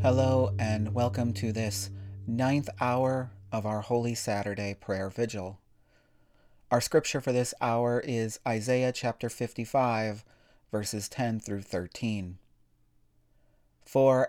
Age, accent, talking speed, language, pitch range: 40-59, American, 115 wpm, English, 110-135 Hz